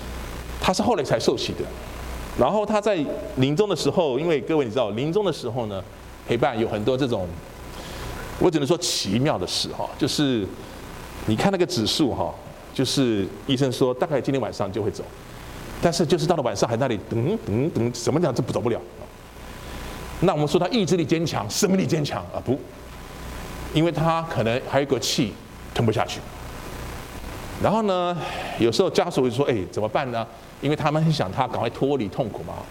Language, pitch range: Chinese, 115-175 Hz